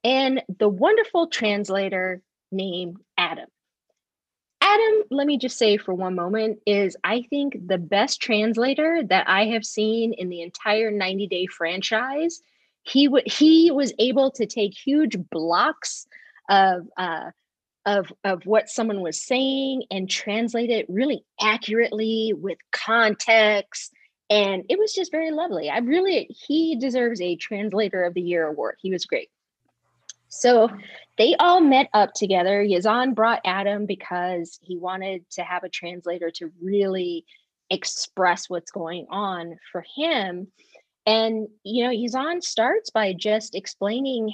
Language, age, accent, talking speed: English, 30-49, American, 140 wpm